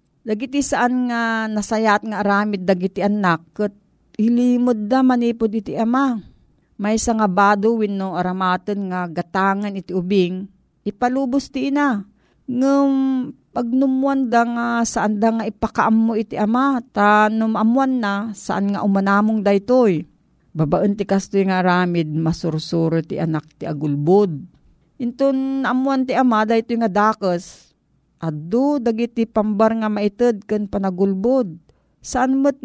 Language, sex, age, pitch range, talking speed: Filipino, female, 40-59, 185-240 Hz, 130 wpm